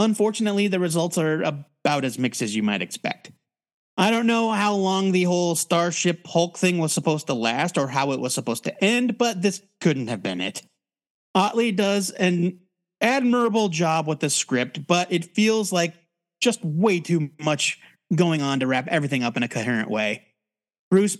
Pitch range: 145-195 Hz